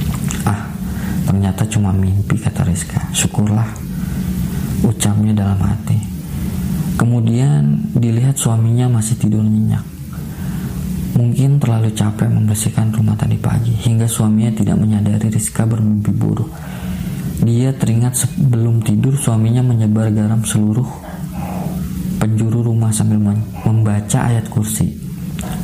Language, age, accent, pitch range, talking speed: Indonesian, 20-39, native, 110-125 Hz, 100 wpm